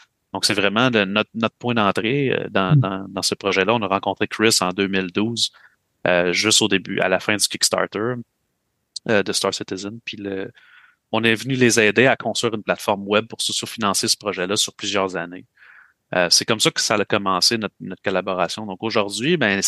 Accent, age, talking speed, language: Canadian, 30-49, 200 wpm, French